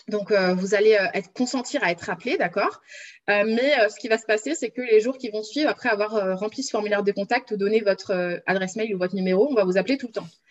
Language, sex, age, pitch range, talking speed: French, female, 20-39, 205-250 Hz, 275 wpm